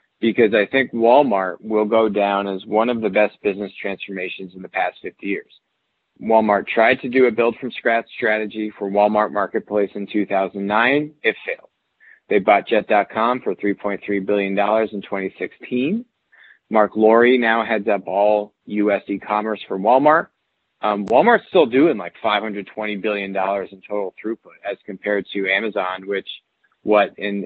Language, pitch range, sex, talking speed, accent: English, 100-115 Hz, male, 155 wpm, American